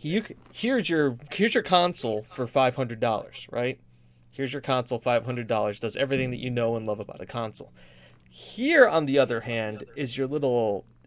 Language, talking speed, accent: English, 170 wpm, American